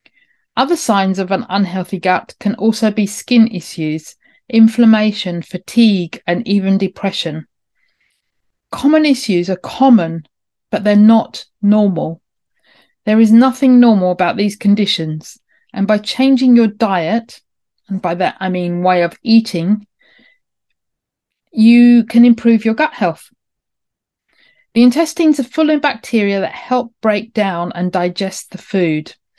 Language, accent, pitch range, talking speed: English, British, 180-240 Hz, 130 wpm